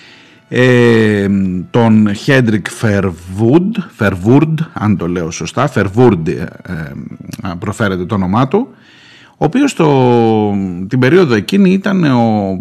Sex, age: male, 50-69